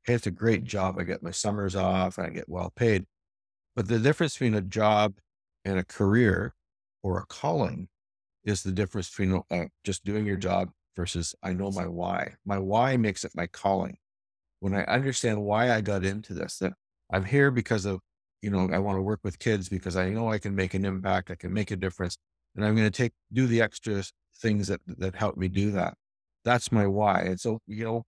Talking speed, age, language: 220 wpm, 50-69, English